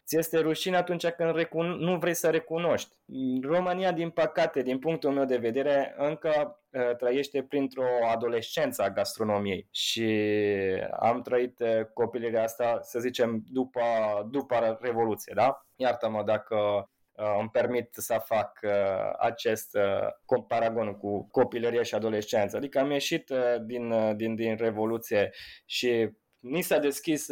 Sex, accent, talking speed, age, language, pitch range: male, native, 125 wpm, 20-39, Romanian, 115-165 Hz